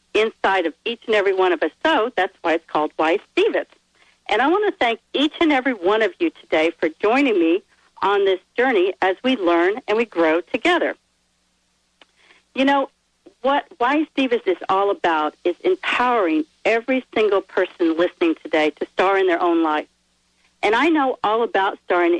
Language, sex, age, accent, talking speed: English, female, 50-69, American, 180 wpm